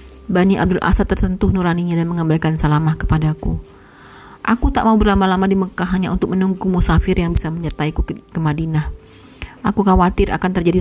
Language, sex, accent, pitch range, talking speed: Indonesian, female, native, 155-205 Hz, 155 wpm